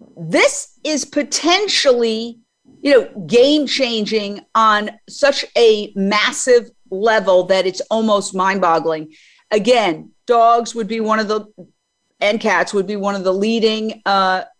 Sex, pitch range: female, 190-235 Hz